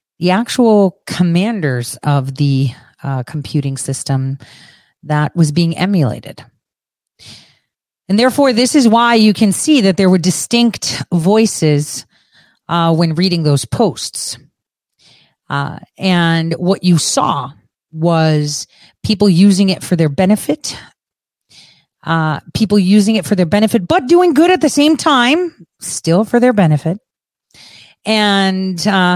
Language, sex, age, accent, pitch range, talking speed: English, female, 30-49, American, 155-205 Hz, 125 wpm